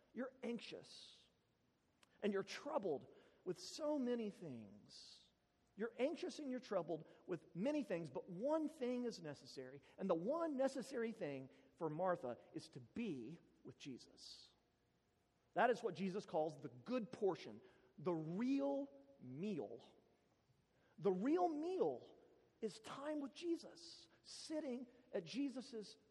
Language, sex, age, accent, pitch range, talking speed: English, male, 40-59, American, 155-255 Hz, 125 wpm